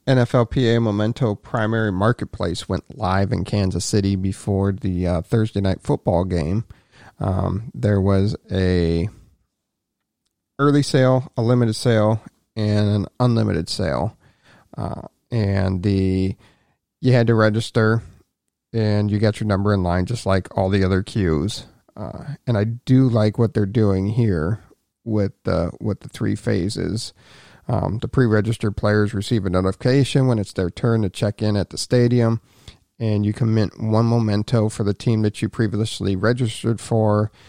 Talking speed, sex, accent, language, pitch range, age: 150 wpm, male, American, English, 95-115 Hz, 40-59